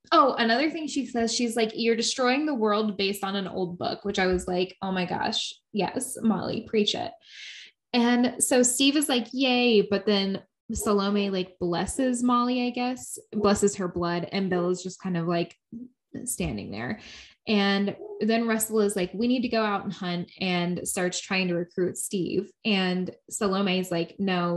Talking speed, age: 185 wpm, 10-29